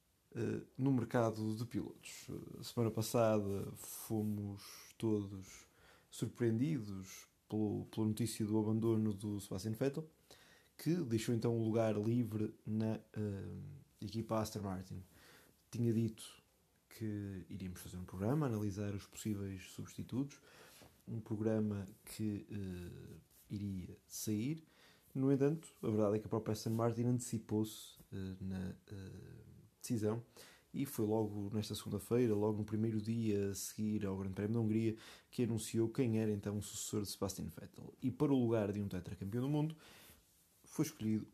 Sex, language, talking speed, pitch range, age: male, Portuguese, 135 wpm, 100-115 Hz, 20-39